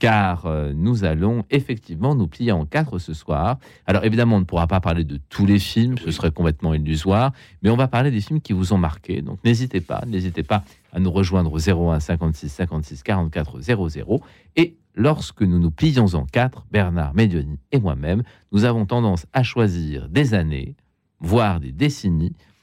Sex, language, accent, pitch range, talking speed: male, French, French, 85-115 Hz, 185 wpm